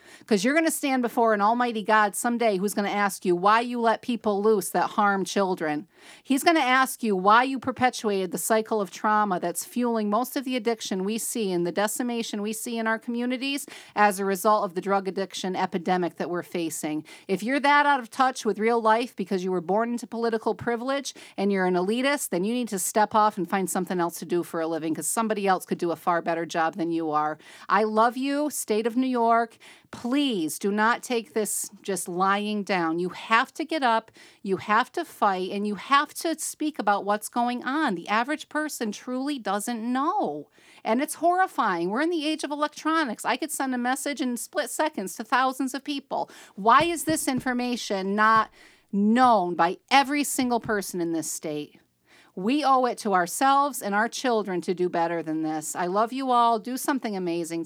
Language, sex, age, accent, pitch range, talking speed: English, female, 40-59, American, 190-255 Hz, 210 wpm